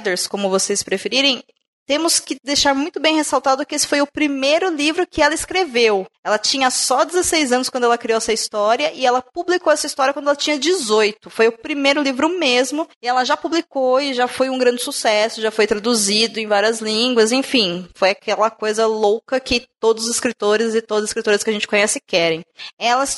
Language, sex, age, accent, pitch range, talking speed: Portuguese, female, 20-39, Brazilian, 220-285 Hz, 200 wpm